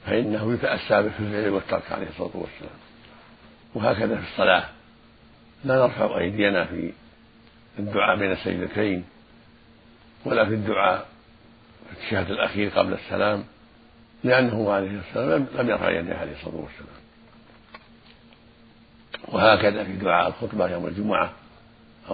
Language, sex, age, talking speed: Arabic, male, 60-79, 105 wpm